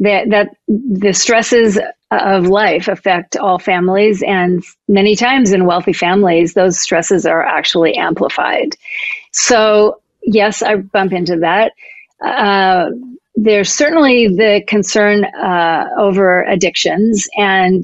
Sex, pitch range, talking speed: female, 185-215 Hz, 115 wpm